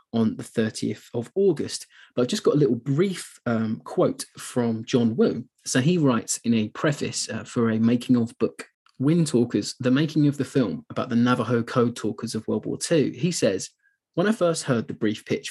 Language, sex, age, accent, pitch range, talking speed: English, male, 20-39, British, 115-140 Hz, 210 wpm